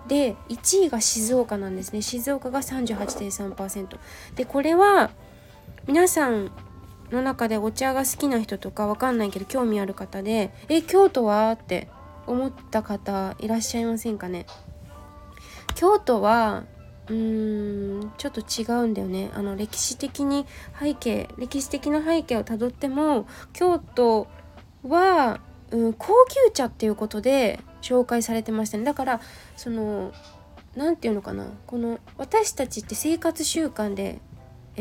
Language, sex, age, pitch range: Japanese, female, 20-39, 210-275 Hz